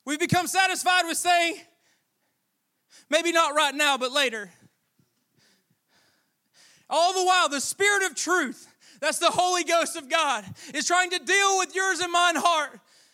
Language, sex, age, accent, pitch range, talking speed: English, male, 20-39, American, 320-380 Hz, 150 wpm